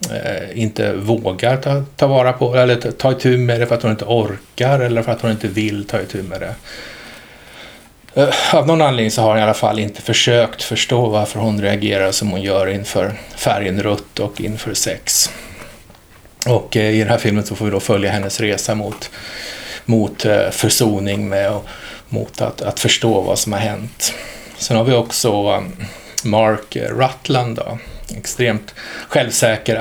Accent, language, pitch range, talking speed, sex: Norwegian, Swedish, 105-120 Hz, 175 wpm, male